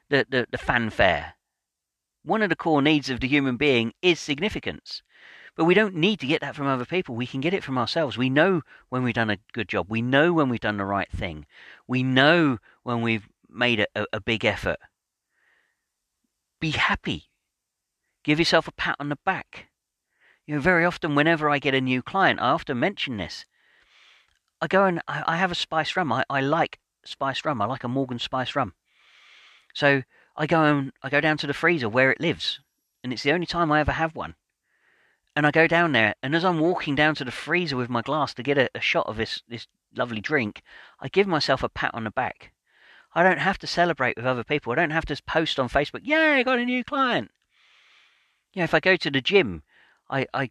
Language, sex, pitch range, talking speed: English, male, 125-165 Hz, 220 wpm